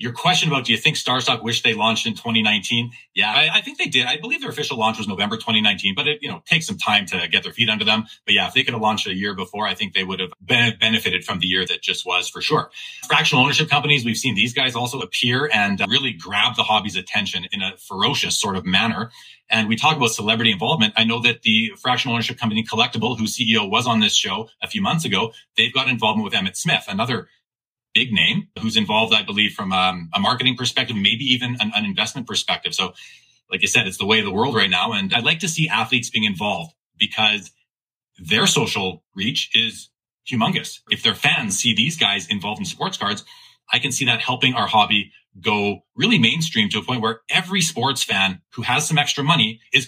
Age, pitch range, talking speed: 30-49, 110-135 Hz, 230 wpm